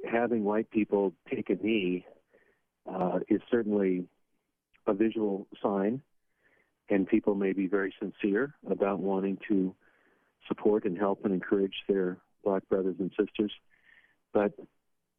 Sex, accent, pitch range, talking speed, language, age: male, American, 90-110 Hz, 125 wpm, English, 50-69